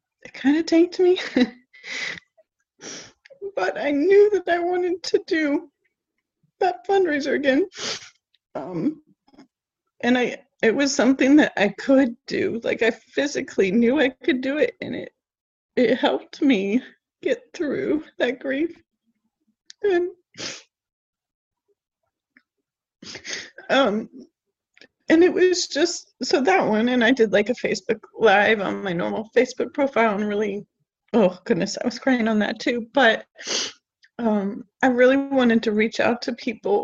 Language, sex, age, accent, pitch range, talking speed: English, female, 30-49, American, 235-330 Hz, 135 wpm